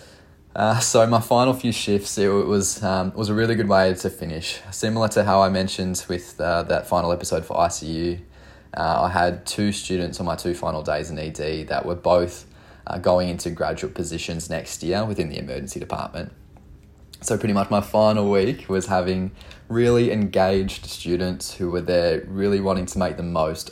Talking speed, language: 185 wpm, English